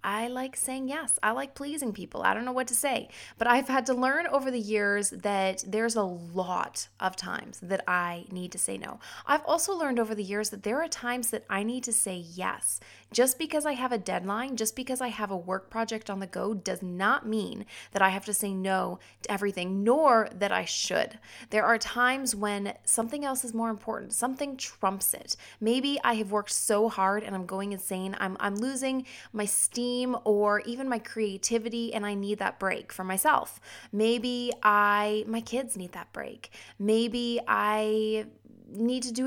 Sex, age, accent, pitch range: female, 20-39, American, 195-245 Hz